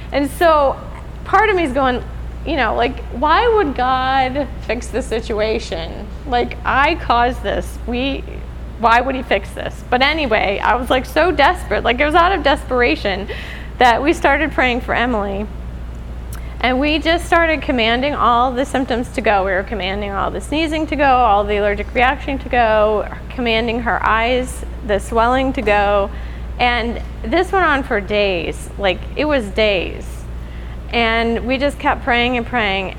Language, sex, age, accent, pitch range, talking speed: English, female, 20-39, American, 195-265 Hz, 170 wpm